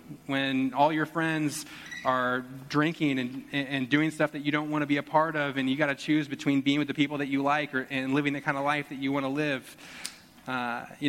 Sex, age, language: male, 20-39, English